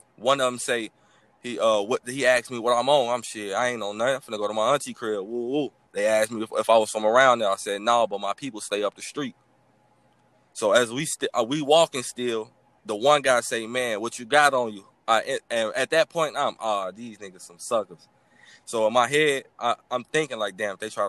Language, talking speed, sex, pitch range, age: English, 255 wpm, male, 110-135 Hz, 20-39